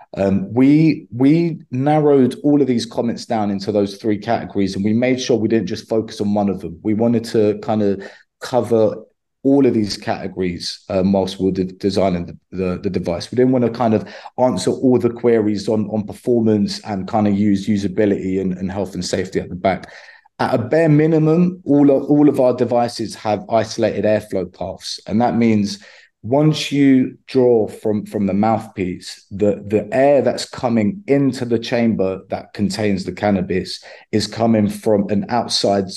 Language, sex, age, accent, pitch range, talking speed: English, male, 20-39, British, 100-125 Hz, 185 wpm